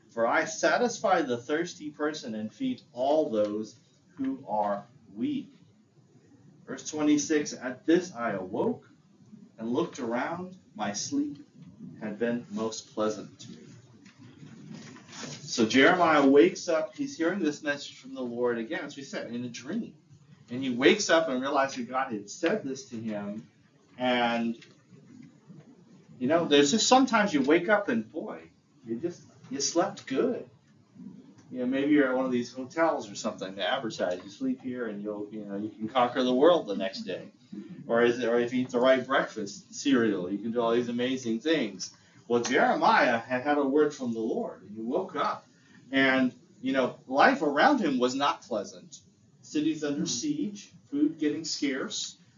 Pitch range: 120-165 Hz